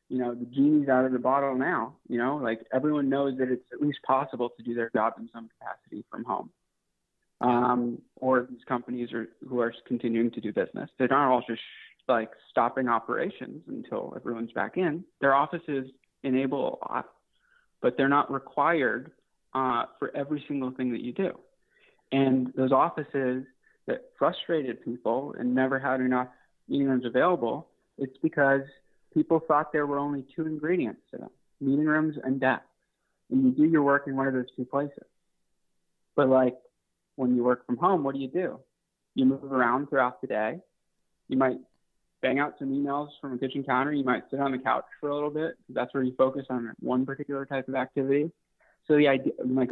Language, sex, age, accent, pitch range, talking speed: English, male, 30-49, American, 125-145 Hz, 195 wpm